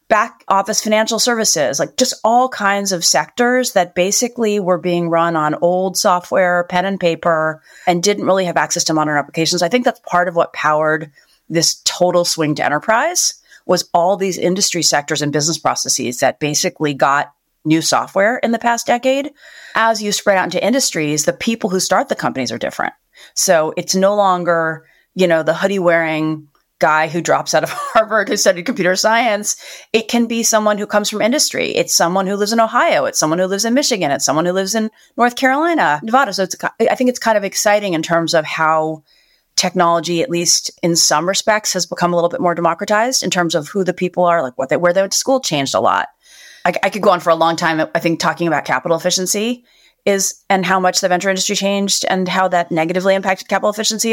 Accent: American